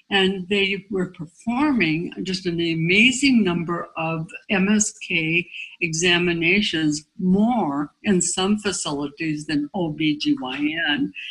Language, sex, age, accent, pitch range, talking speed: English, female, 60-79, American, 150-185 Hz, 90 wpm